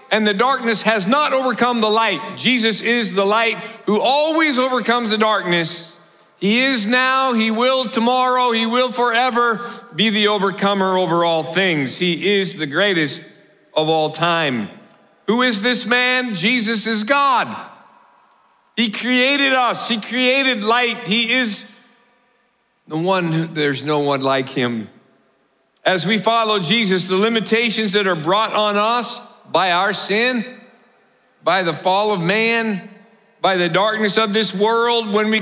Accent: American